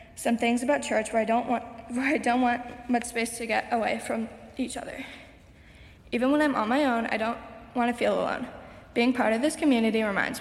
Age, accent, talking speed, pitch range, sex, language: 20-39, American, 215 wpm, 215-245 Hz, female, English